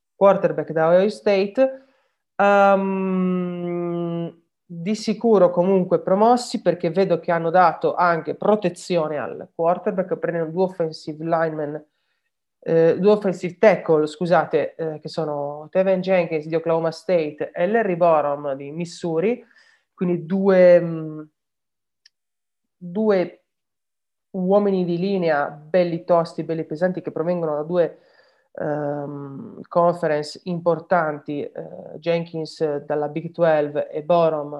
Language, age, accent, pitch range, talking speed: Italian, 30-49, native, 160-195 Hz, 110 wpm